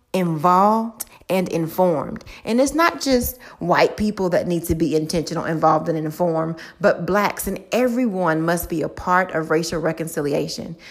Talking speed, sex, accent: 155 wpm, female, American